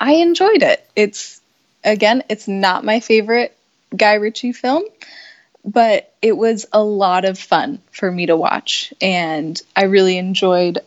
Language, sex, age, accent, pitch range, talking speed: English, female, 10-29, American, 180-220 Hz, 150 wpm